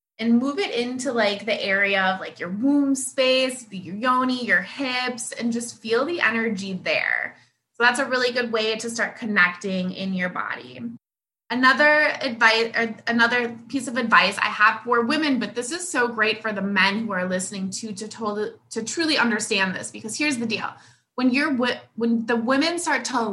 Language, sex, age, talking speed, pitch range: English, female, 20-39, 190 wpm, 200-255 Hz